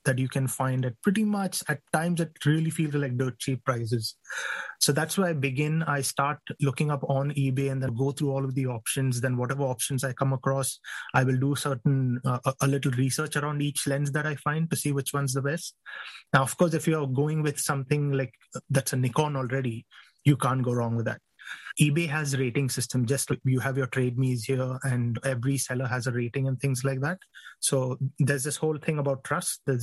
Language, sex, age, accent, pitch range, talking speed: English, male, 20-39, Indian, 130-150 Hz, 225 wpm